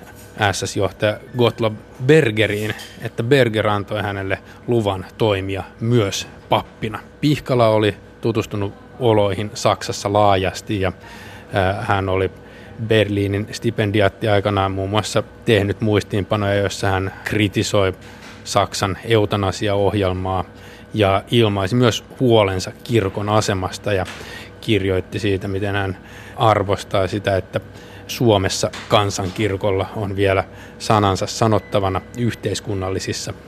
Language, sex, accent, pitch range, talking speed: Finnish, male, native, 95-110 Hz, 95 wpm